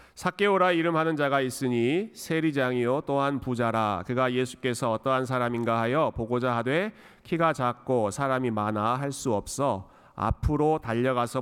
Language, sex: Korean, male